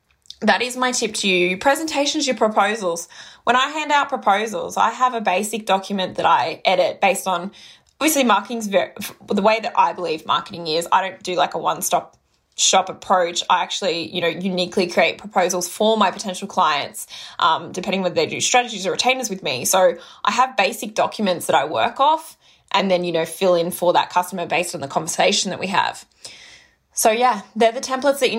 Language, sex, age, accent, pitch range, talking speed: English, female, 20-39, Australian, 180-235 Hz, 205 wpm